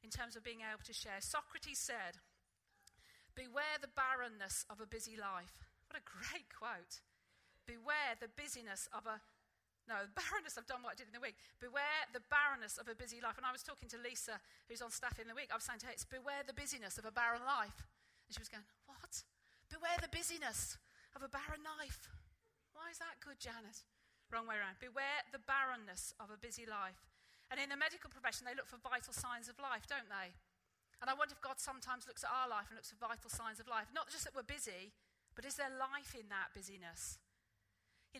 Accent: British